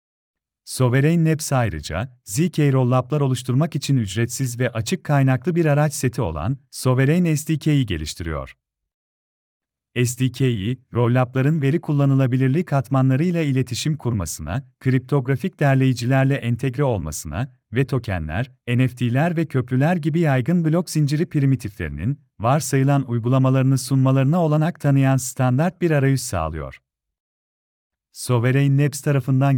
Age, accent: 40-59, native